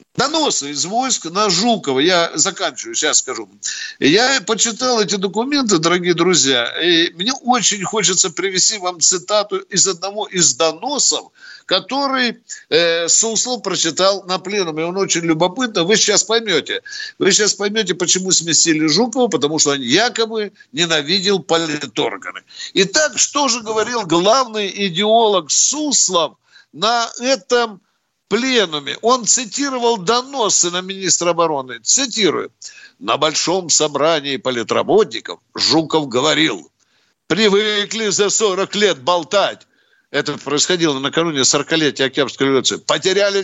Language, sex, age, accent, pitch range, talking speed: Russian, male, 50-69, native, 165-230 Hz, 120 wpm